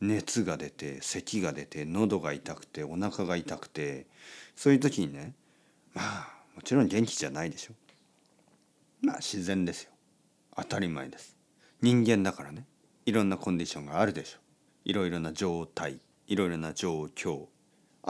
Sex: male